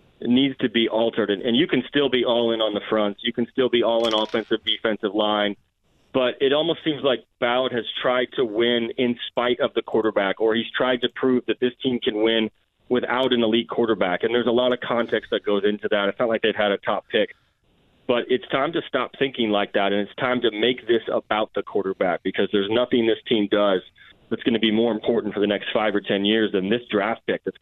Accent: American